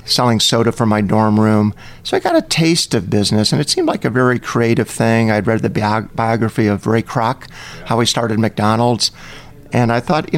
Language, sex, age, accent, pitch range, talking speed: English, male, 50-69, American, 110-130 Hz, 210 wpm